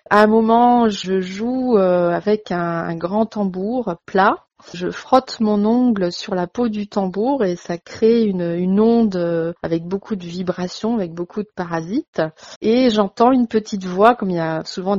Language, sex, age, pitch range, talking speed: French, female, 30-49, 180-225 Hz, 170 wpm